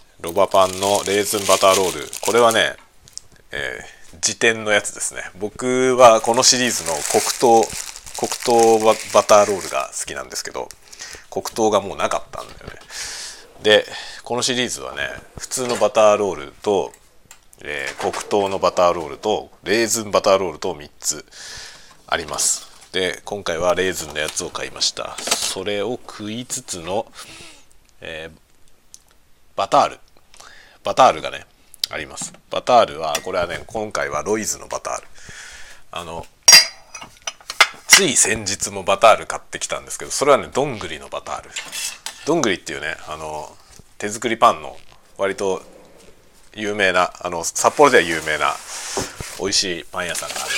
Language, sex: Japanese, male